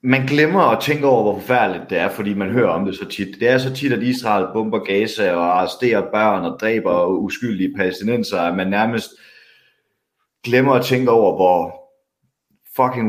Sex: male